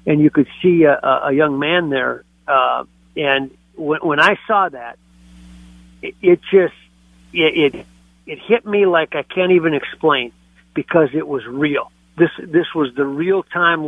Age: 50-69